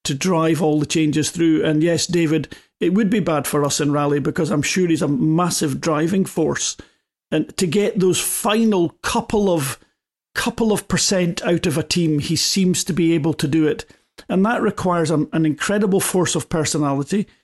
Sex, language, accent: male, English, British